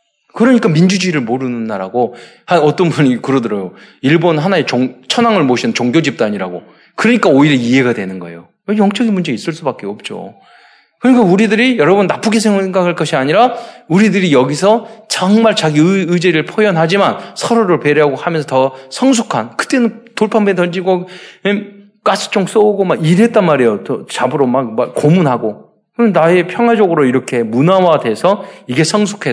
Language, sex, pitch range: Korean, male, 155-225 Hz